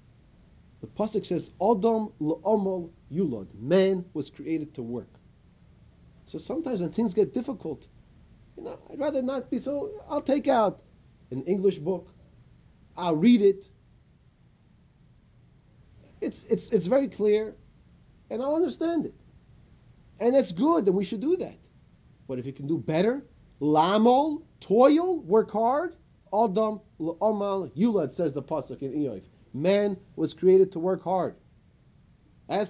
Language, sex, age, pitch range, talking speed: English, male, 30-49, 150-225 Hz, 140 wpm